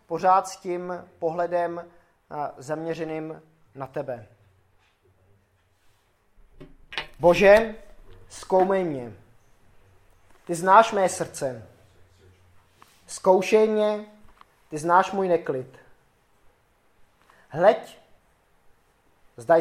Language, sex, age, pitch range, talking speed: Czech, male, 20-39, 105-175 Hz, 65 wpm